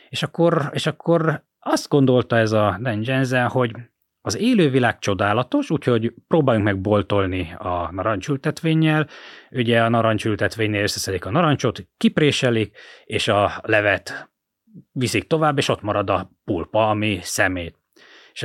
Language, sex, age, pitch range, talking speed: Hungarian, male, 30-49, 100-145 Hz, 125 wpm